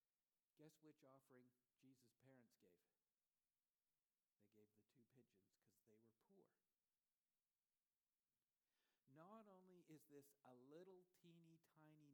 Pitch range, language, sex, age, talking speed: 130-170 Hz, English, male, 60-79, 115 wpm